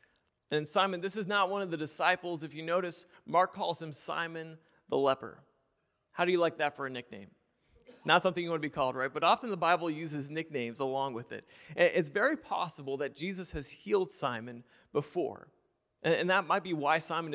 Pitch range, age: 155-195 Hz, 30-49